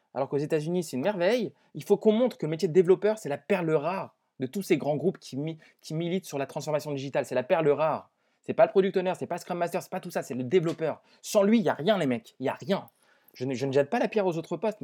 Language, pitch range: French, 150-200 Hz